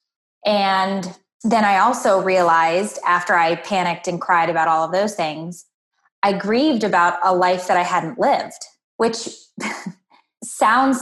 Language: English